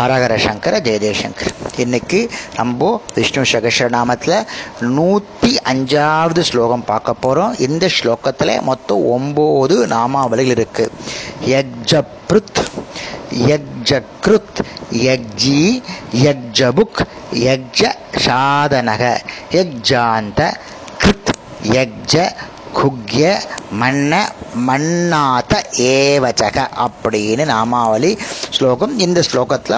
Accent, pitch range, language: native, 120-155 Hz, Tamil